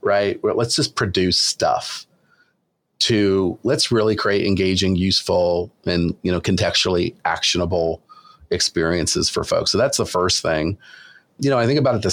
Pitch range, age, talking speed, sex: 95-110 Hz, 40-59, 155 wpm, male